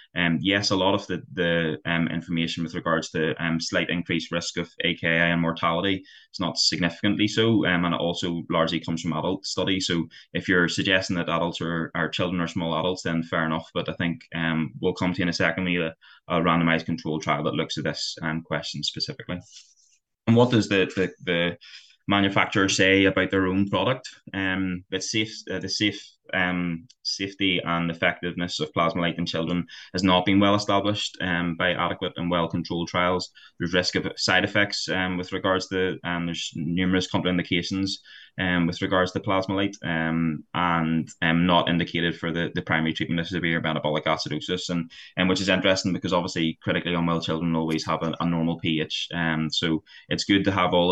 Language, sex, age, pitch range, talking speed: English, male, 20-39, 85-95 Hz, 195 wpm